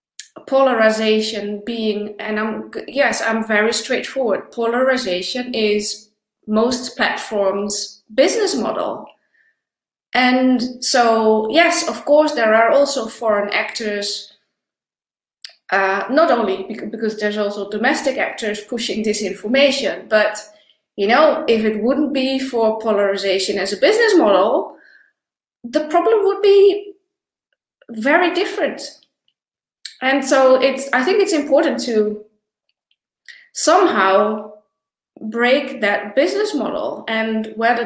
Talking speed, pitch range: 110 wpm, 215-280 Hz